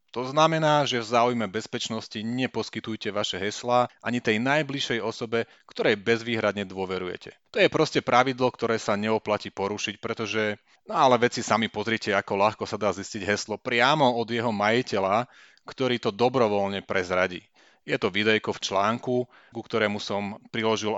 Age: 30-49